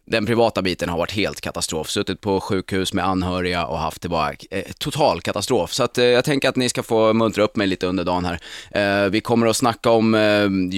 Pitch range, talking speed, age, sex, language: 100-125 Hz, 235 wpm, 20-39, male, Swedish